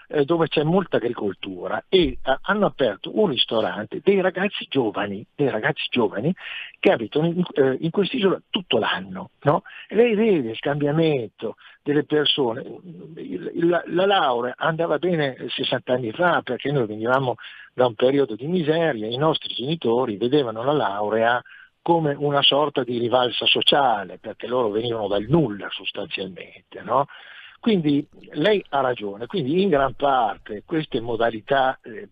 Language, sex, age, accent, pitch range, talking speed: Italian, male, 50-69, native, 125-170 Hz, 140 wpm